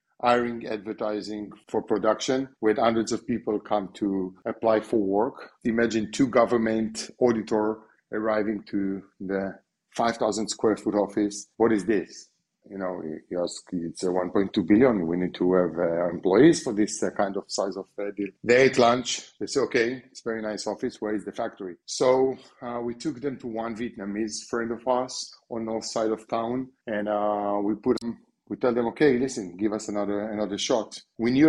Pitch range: 105-125 Hz